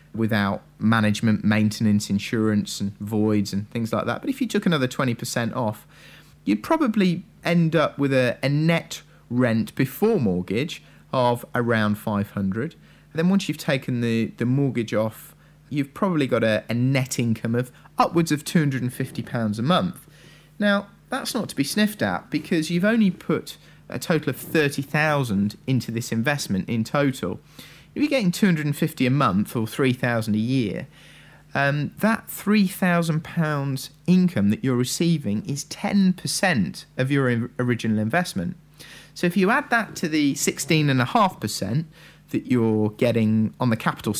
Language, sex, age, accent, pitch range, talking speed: English, male, 30-49, British, 115-175 Hz, 150 wpm